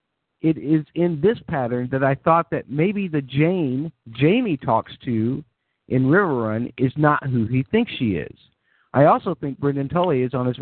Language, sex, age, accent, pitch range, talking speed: English, male, 50-69, American, 110-145 Hz, 180 wpm